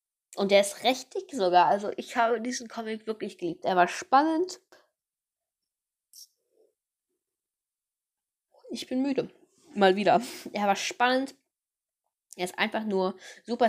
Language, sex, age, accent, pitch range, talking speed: German, female, 10-29, German, 190-260 Hz, 125 wpm